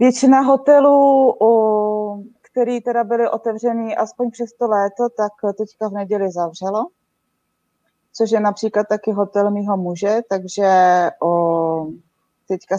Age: 30-49